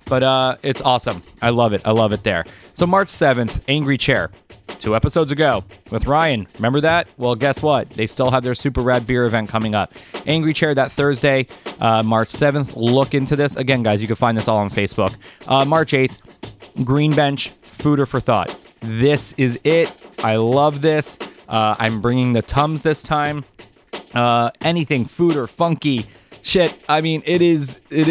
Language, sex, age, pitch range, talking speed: English, male, 20-39, 120-155 Hz, 190 wpm